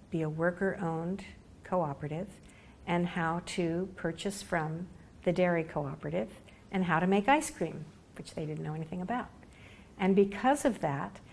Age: 60-79